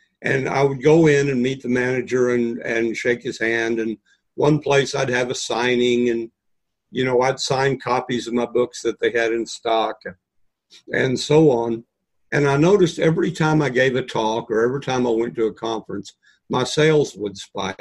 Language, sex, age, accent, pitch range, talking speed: English, male, 50-69, American, 115-140 Hz, 200 wpm